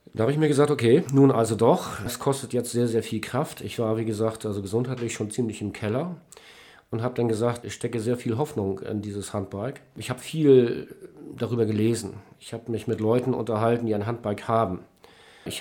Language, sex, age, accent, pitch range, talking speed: German, male, 40-59, German, 105-130 Hz, 210 wpm